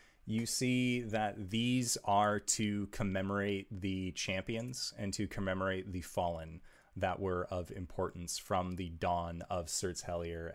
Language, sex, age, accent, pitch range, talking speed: English, male, 30-49, American, 90-105 Hz, 135 wpm